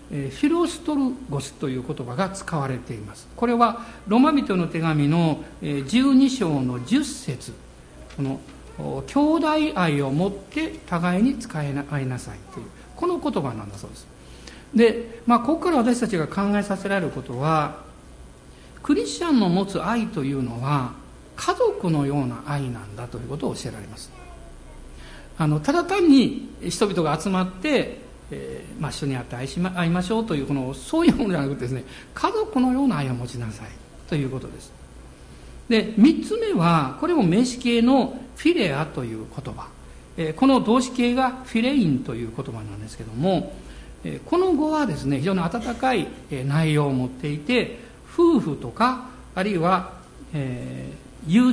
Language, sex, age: Japanese, male, 60-79